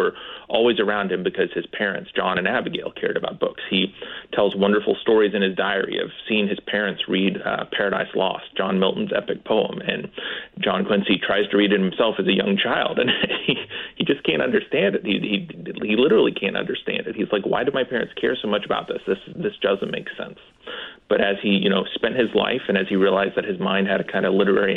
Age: 30-49